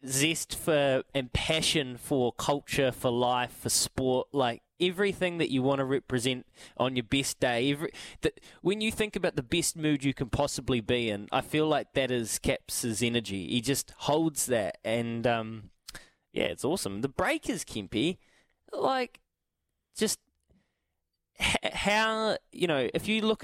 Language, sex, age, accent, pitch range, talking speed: English, male, 20-39, Australian, 120-150 Hz, 160 wpm